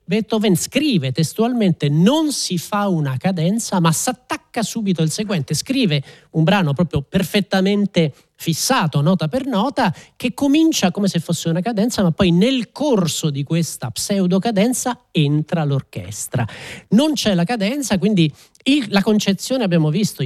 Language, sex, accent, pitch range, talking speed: Italian, male, native, 150-210 Hz, 150 wpm